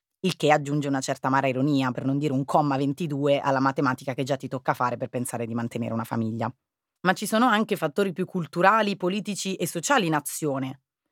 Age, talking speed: 30-49, 205 wpm